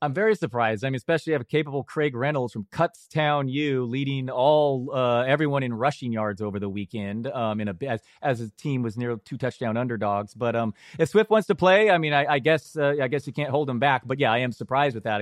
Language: English